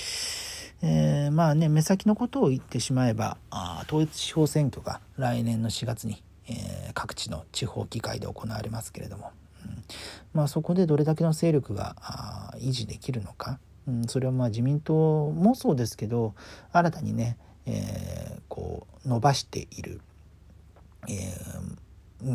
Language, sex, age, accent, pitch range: Japanese, male, 40-59, native, 105-150 Hz